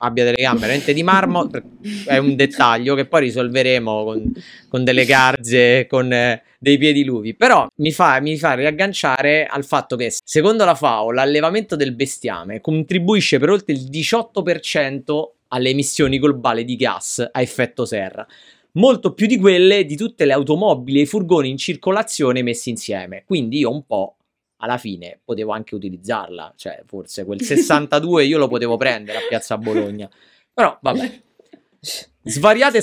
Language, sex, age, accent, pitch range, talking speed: Italian, male, 30-49, native, 120-155 Hz, 160 wpm